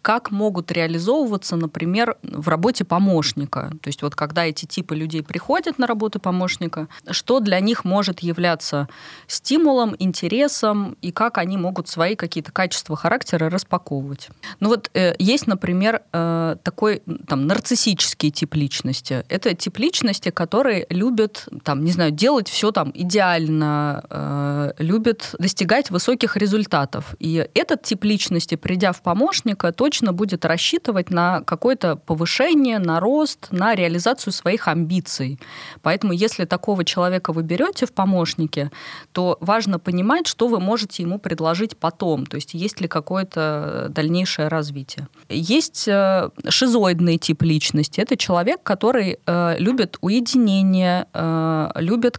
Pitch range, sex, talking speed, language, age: 160-215 Hz, female, 130 wpm, Russian, 20-39